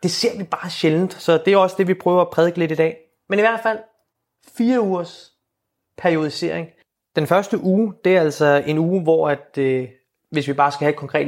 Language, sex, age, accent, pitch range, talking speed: Danish, male, 30-49, native, 145-190 Hz, 220 wpm